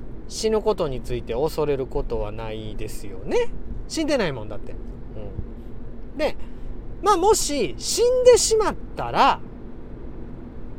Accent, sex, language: native, male, Japanese